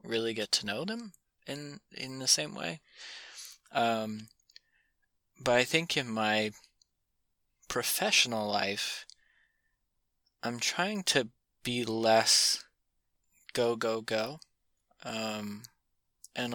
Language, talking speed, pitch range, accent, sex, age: English, 100 wpm, 110-120 Hz, American, male, 20-39